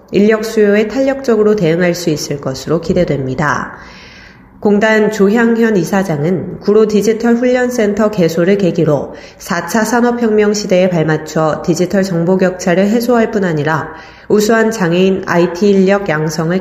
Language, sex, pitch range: Korean, female, 160-210 Hz